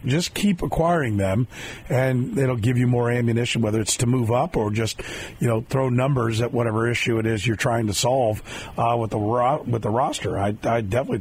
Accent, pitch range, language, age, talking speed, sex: American, 120-170 Hz, English, 40-59, 215 wpm, male